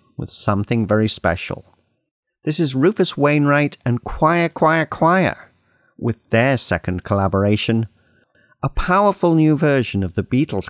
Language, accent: English, British